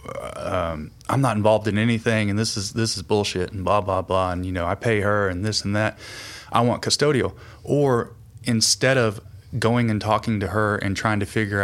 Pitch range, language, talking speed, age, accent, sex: 95-115 Hz, English, 210 wpm, 30-49, American, male